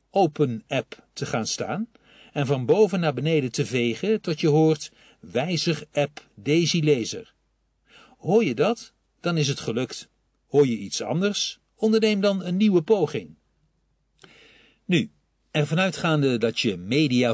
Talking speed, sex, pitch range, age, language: 140 wpm, male, 120-170 Hz, 50-69, Dutch